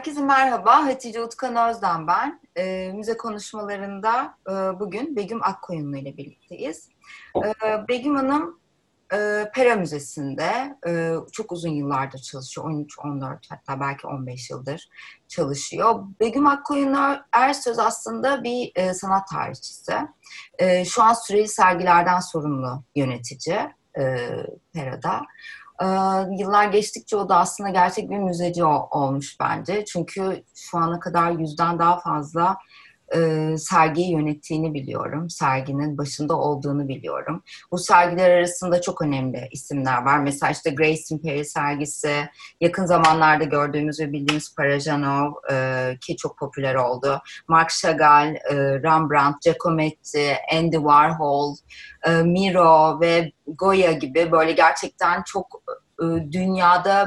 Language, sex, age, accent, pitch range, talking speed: Turkish, female, 30-49, native, 145-195 Hz, 120 wpm